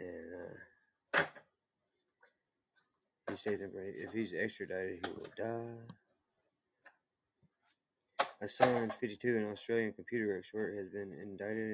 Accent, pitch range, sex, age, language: American, 100-110 Hz, male, 20-39, Chinese